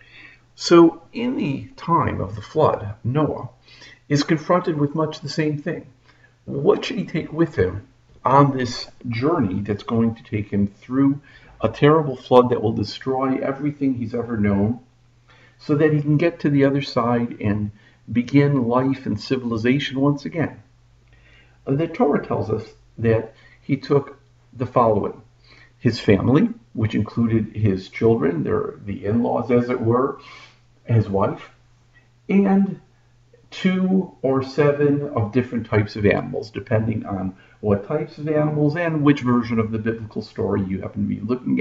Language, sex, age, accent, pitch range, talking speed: English, male, 50-69, American, 110-145 Hz, 150 wpm